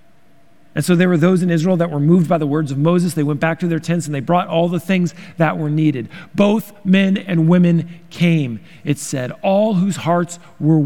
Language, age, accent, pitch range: English, 40-59, American, 145-180 Hz